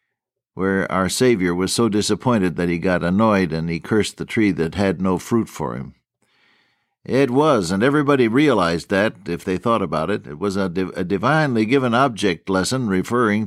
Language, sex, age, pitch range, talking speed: English, male, 60-79, 95-125 Hz, 185 wpm